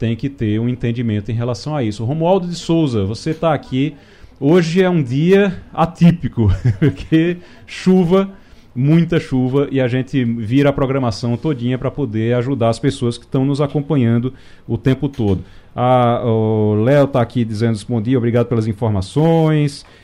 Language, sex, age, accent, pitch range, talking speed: Portuguese, male, 40-59, Brazilian, 120-160 Hz, 160 wpm